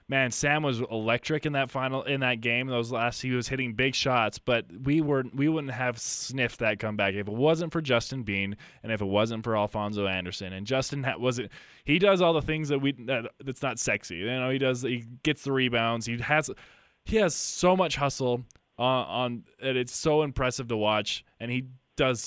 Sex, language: male, English